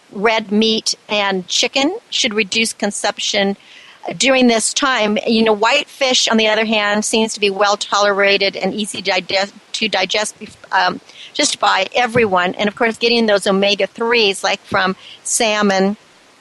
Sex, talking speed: female, 140 wpm